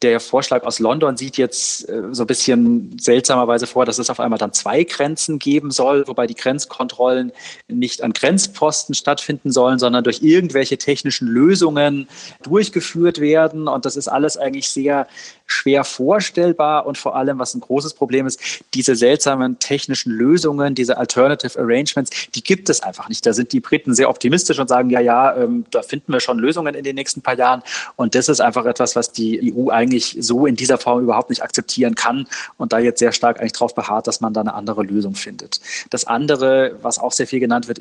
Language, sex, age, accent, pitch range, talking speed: German, male, 30-49, German, 120-145 Hz, 200 wpm